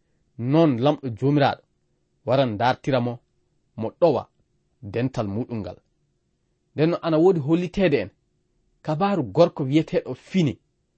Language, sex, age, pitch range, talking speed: English, male, 30-49, 125-185 Hz, 105 wpm